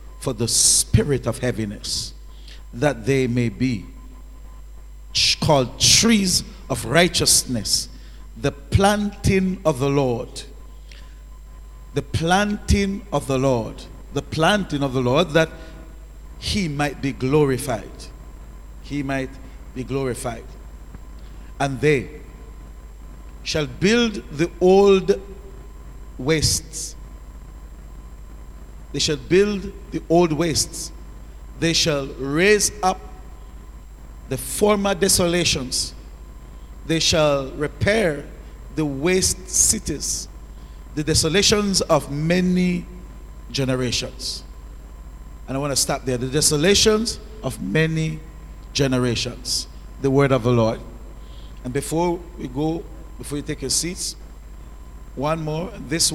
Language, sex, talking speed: English, male, 105 wpm